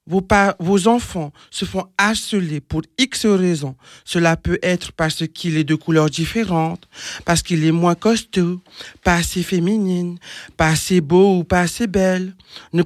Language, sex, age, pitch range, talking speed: French, male, 40-59, 175-215 Hz, 165 wpm